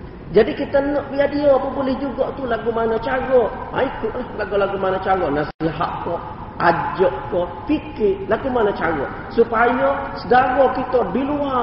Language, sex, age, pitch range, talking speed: Malay, male, 40-59, 190-250 Hz, 150 wpm